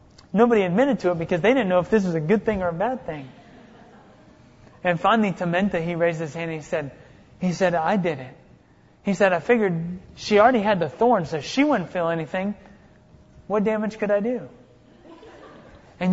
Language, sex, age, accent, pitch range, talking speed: English, male, 30-49, American, 160-195 Hz, 195 wpm